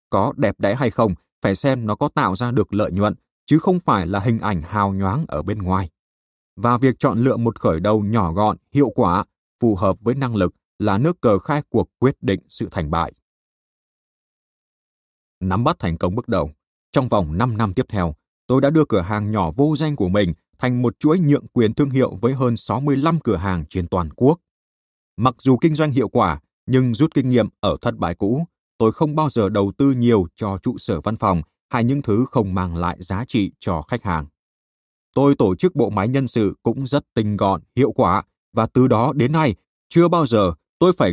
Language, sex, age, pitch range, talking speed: Vietnamese, male, 20-39, 95-130 Hz, 215 wpm